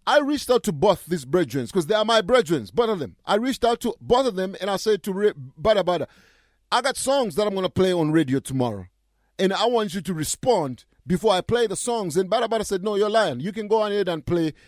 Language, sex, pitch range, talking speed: English, male, 180-235 Hz, 265 wpm